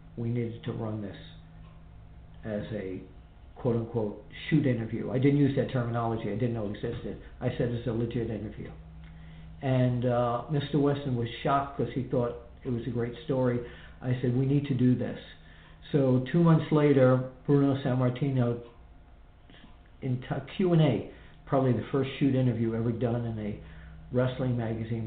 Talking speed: 160 wpm